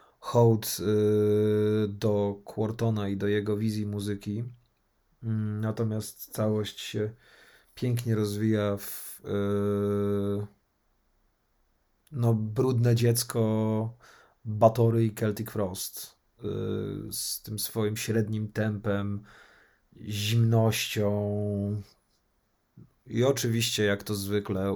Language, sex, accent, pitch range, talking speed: Polish, male, native, 100-115 Hz, 75 wpm